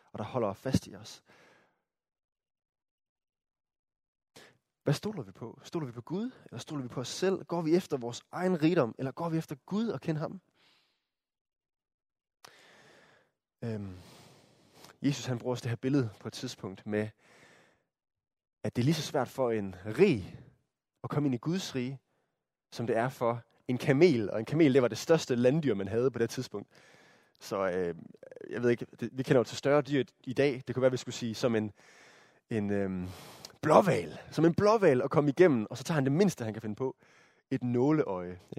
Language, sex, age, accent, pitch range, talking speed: Danish, male, 20-39, native, 120-165 Hz, 195 wpm